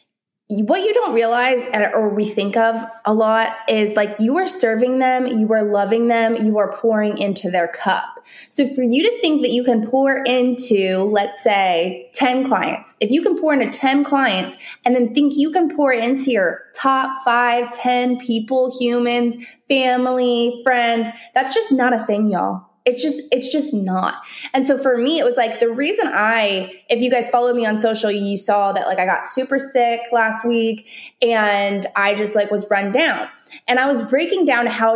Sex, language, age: female, English, 20-39